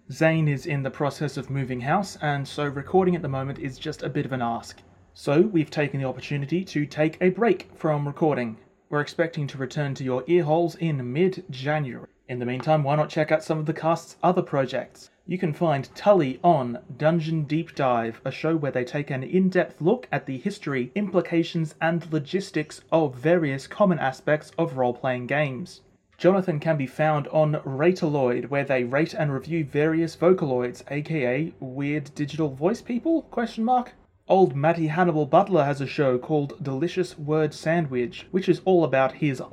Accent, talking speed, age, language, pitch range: Australian, 180 wpm, 30-49, English, 135-170 Hz